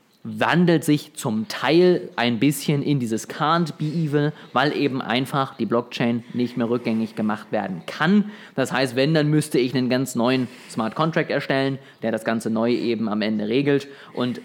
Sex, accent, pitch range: male, German, 120-150 Hz